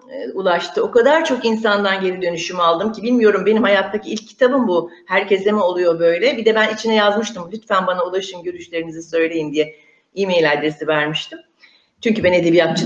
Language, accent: Turkish, native